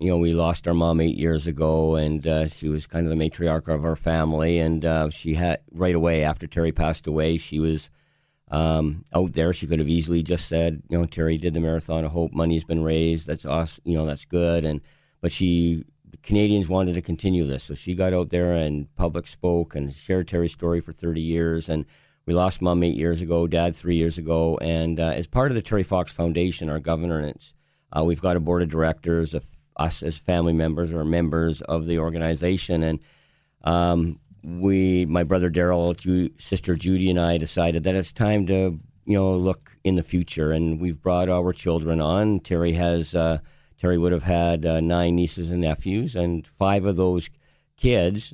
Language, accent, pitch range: English, American, 80-90 Hz